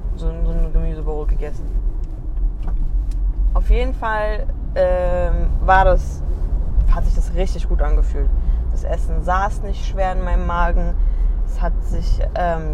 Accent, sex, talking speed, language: German, female, 130 wpm, German